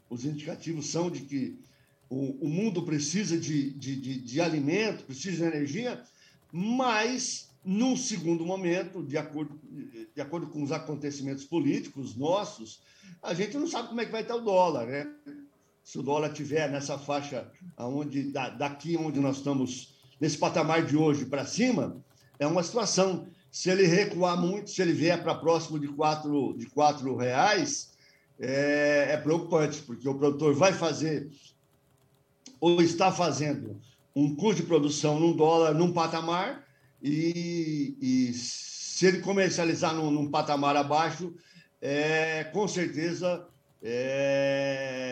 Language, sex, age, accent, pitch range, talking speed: Portuguese, male, 60-79, Brazilian, 140-175 Hz, 140 wpm